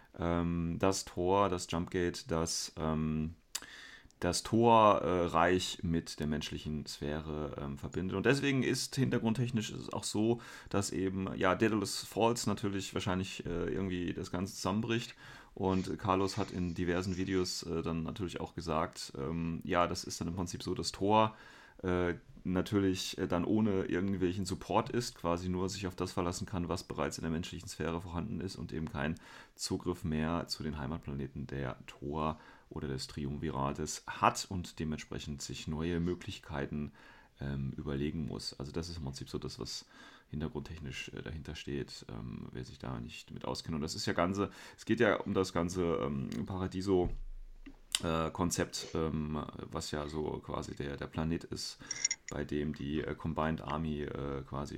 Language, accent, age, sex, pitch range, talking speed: German, German, 30-49, male, 80-95 Hz, 160 wpm